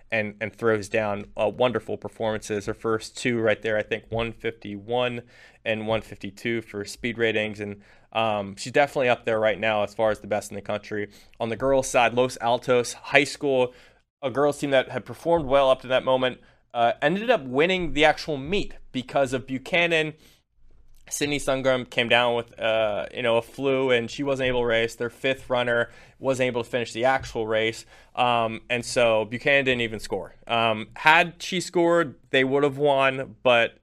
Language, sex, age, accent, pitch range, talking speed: English, male, 20-39, American, 110-130 Hz, 190 wpm